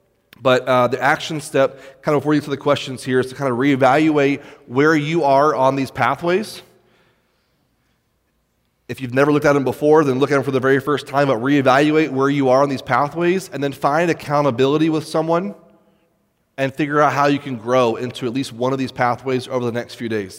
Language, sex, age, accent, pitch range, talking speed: English, male, 30-49, American, 125-150 Hz, 220 wpm